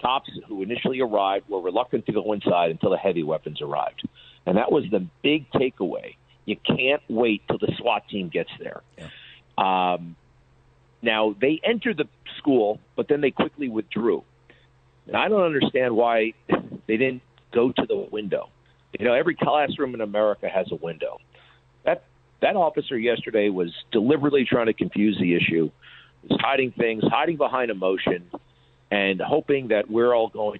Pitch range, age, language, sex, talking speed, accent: 85-135 Hz, 50-69, English, male, 165 wpm, American